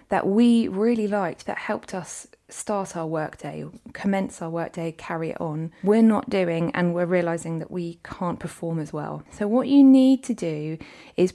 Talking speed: 185 wpm